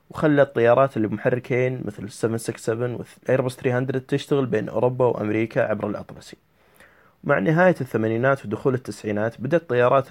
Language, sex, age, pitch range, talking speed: Persian, male, 20-39, 110-145 Hz, 125 wpm